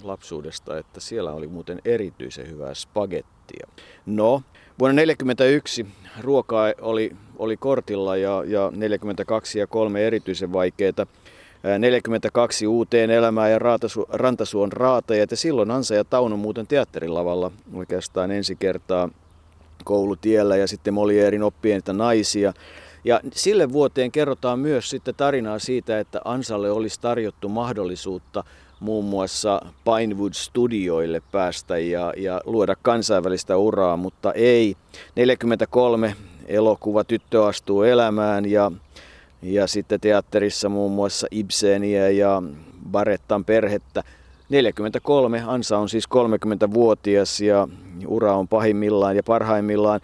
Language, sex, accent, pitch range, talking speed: Finnish, male, native, 95-115 Hz, 120 wpm